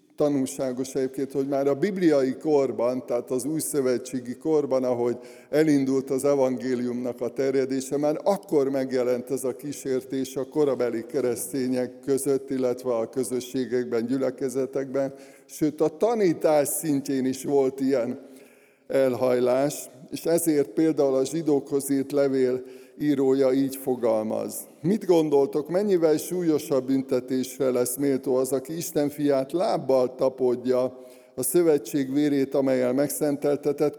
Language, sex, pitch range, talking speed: Hungarian, male, 130-145 Hz, 120 wpm